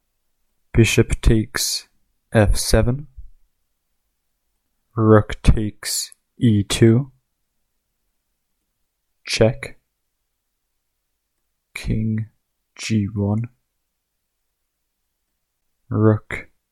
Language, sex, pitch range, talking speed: English, male, 100-115 Hz, 35 wpm